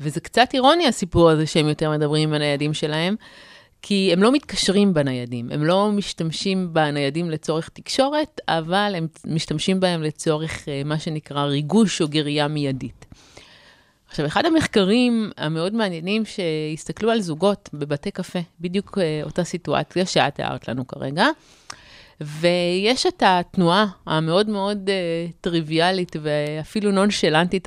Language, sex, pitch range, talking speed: Hebrew, female, 155-200 Hz, 125 wpm